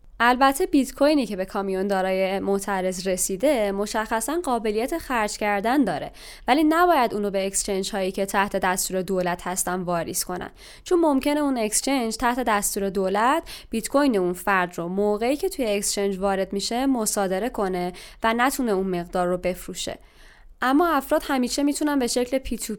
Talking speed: 160 wpm